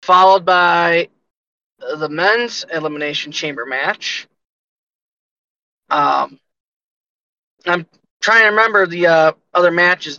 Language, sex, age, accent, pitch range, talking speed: English, male, 20-39, American, 155-190 Hz, 95 wpm